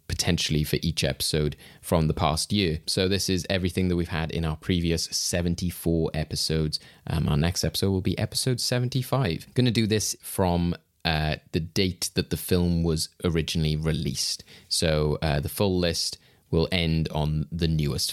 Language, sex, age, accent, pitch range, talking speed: English, male, 20-39, British, 85-115 Hz, 170 wpm